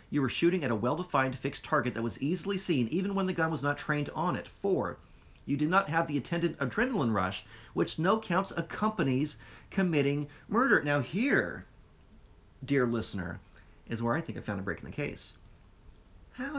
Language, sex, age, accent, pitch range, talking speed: English, male, 40-59, American, 100-155 Hz, 190 wpm